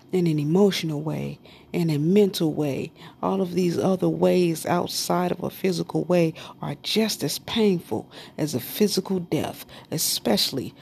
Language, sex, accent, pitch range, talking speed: English, female, American, 160-210 Hz, 150 wpm